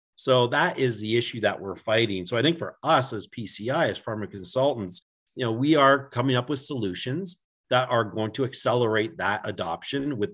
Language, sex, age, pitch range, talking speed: English, male, 40-59, 105-135 Hz, 195 wpm